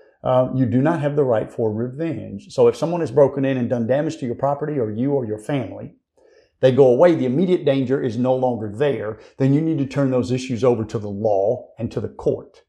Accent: American